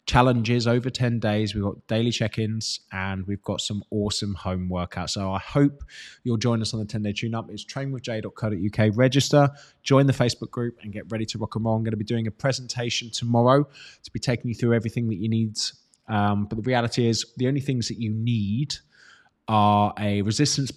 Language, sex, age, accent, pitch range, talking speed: English, male, 20-39, British, 110-135 Hz, 200 wpm